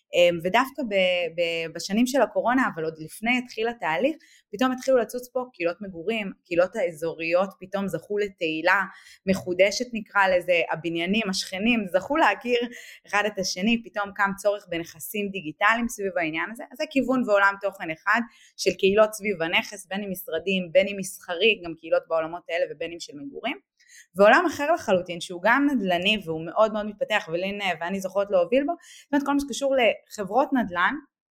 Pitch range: 175-250 Hz